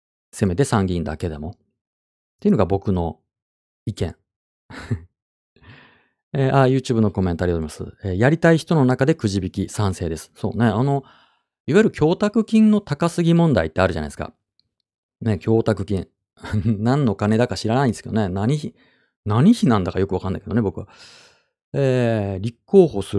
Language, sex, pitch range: Japanese, male, 90-135 Hz